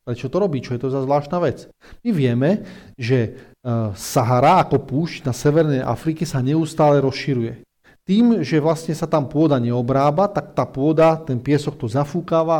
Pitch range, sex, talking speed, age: 135-175 Hz, male, 170 wpm, 40-59